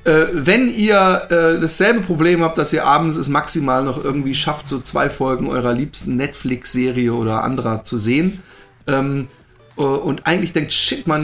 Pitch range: 125-160 Hz